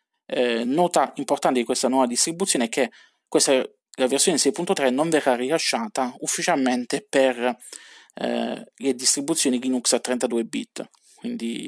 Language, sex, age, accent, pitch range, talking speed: Italian, male, 20-39, native, 125-170 Hz, 135 wpm